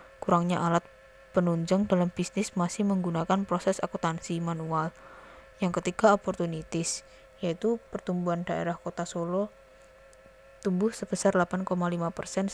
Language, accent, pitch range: Indonesian, native, 135-185 Hz